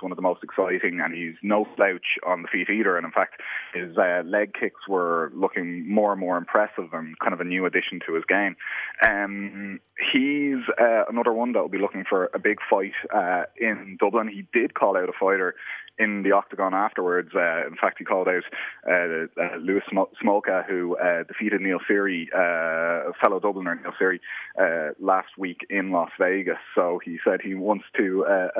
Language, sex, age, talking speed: English, male, 20-39, 200 wpm